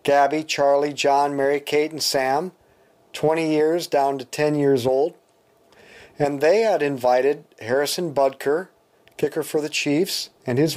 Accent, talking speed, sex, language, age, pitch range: American, 140 wpm, male, English, 40-59, 135-160 Hz